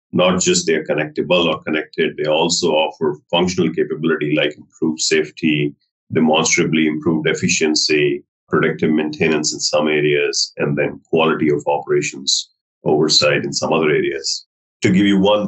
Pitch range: 75-95 Hz